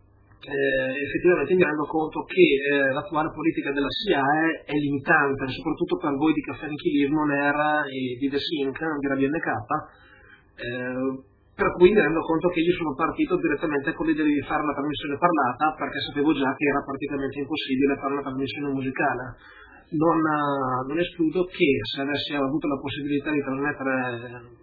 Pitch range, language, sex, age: 130-155 Hz, Italian, female, 30-49